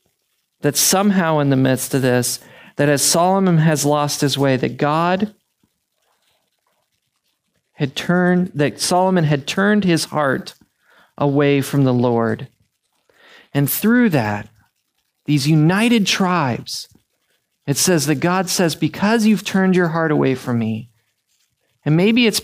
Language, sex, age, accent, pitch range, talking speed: English, male, 40-59, American, 135-170 Hz, 135 wpm